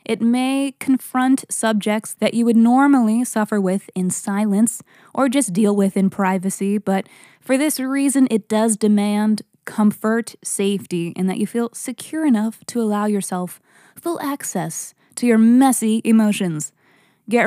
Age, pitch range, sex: 20-39, 195-235 Hz, female